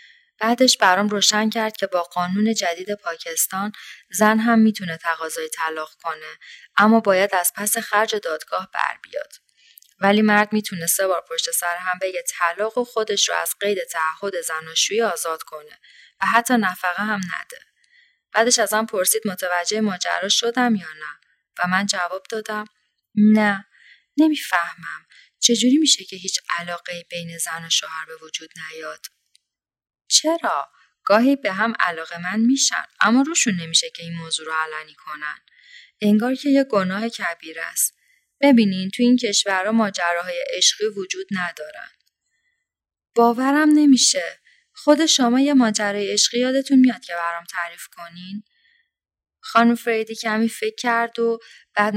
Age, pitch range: 20-39, 175-235 Hz